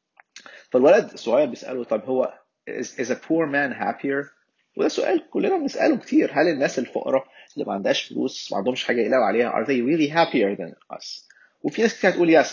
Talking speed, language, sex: 185 wpm, Arabic, male